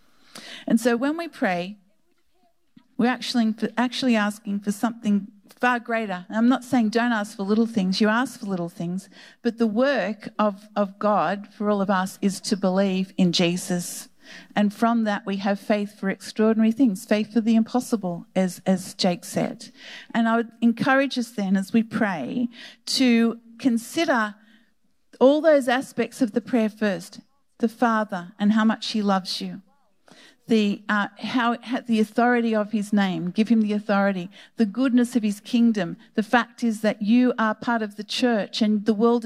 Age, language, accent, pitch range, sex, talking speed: 50-69, English, Australian, 205-240 Hz, female, 175 wpm